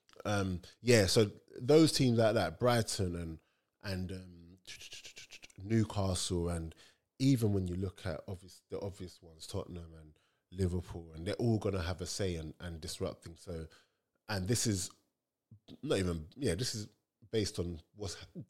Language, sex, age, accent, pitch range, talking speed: English, male, 20-39, British, 90-110 Hz, 150 wpm